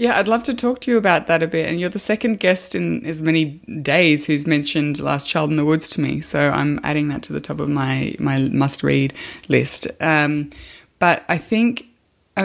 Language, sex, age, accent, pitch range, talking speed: English, female, 20-39, Australian, 145-170 Hz, 220 wpm